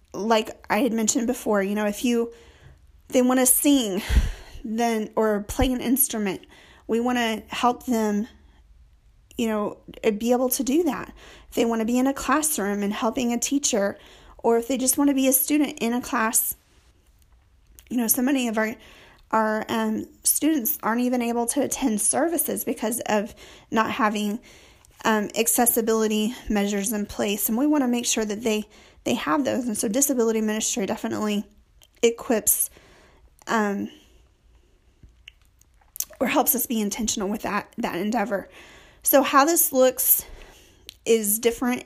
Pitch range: 215-260 Hz